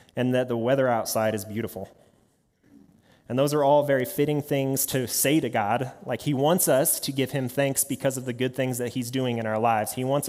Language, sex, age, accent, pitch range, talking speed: English, male, 30-49, American, 115-140 Hz, 225 wpm